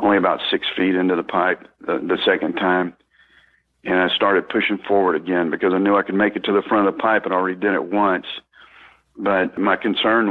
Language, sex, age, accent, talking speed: English, male, 50-69, American, 220 wpm